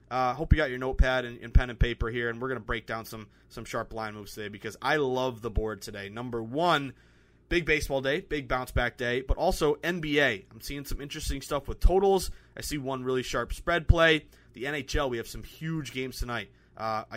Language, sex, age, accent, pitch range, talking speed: English, male, 20-39, American, 115-150 Hz, 225 wpm